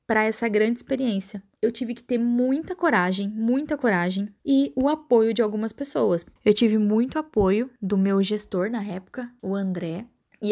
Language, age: Portuguese, 10-29